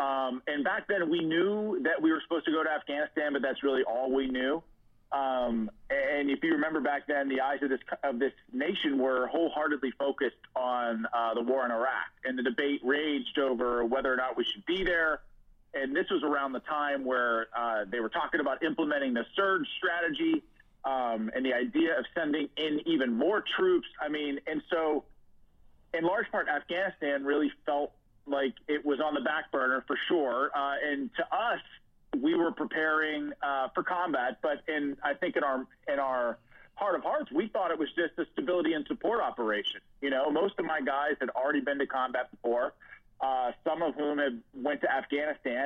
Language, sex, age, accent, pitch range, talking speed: English, male, 30-49, American, 130-165 Hz, 195 wpm